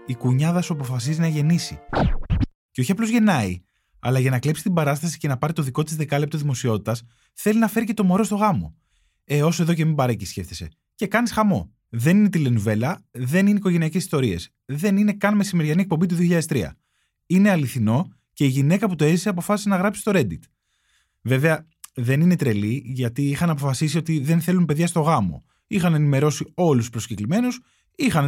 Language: Greek